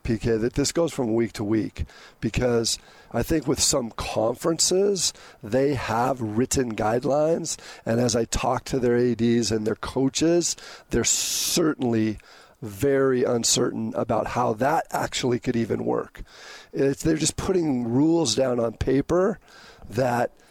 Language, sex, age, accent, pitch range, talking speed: English, male, 40-59, American, 115-140 Hz, 140 wpm